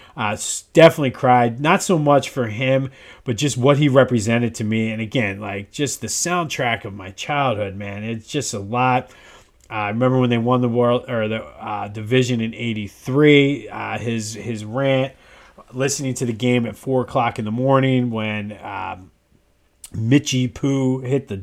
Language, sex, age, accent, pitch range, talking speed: English, male, 30-49, American, 115-135 Hz, 175 wpm